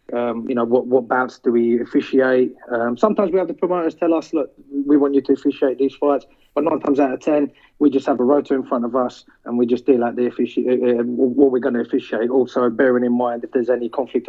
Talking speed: 255 wpm